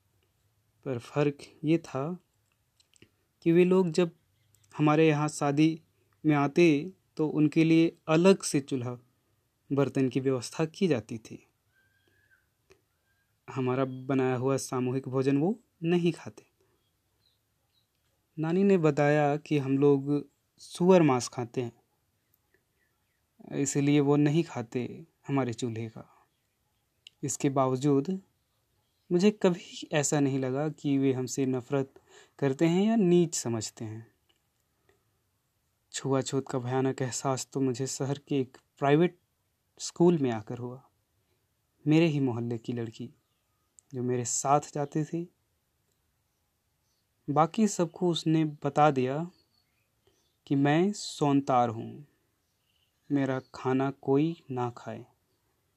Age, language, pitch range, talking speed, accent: 30-49, Hindi, 120-155 Hz, 115 wpm, native